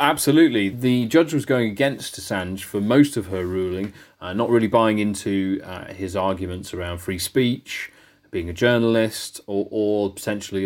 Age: 30-49